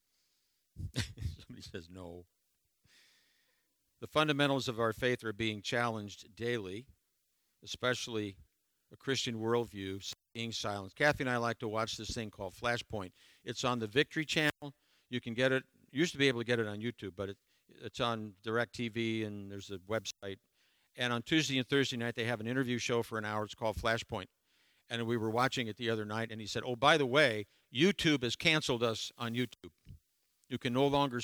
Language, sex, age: English, male, 50-69